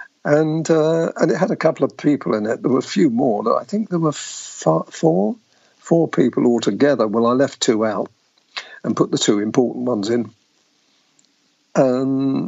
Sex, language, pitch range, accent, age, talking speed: male, English, 120-165 Hz, British, 50-69, 185 wpm